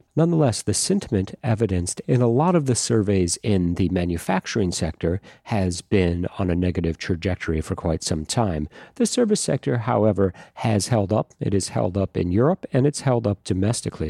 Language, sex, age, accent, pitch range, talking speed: English, male, 40-59, American, 90-120 Hz, 180 wpm